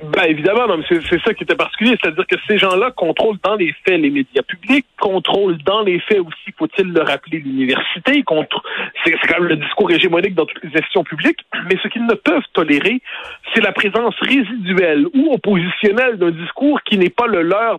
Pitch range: 165-240 Hz